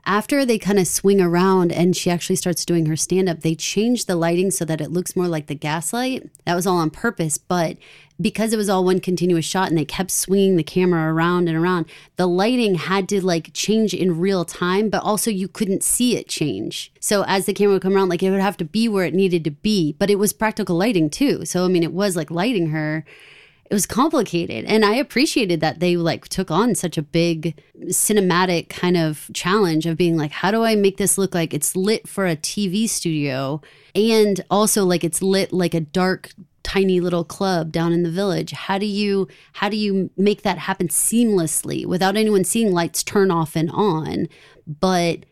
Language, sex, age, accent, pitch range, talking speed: English, female, 30-49, American, 165-195 Hz, 215 wpm